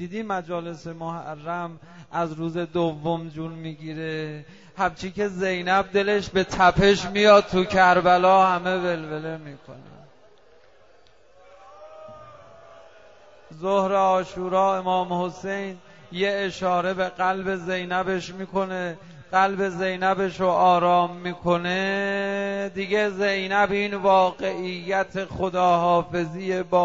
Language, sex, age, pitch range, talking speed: Persian, male, 30-49, 175-195 Hz, 90 wpm